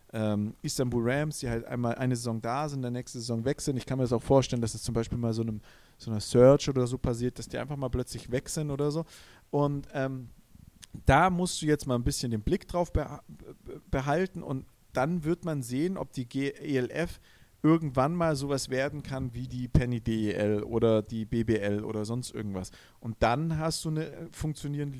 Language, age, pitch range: German, 40-59, 120-155 Hz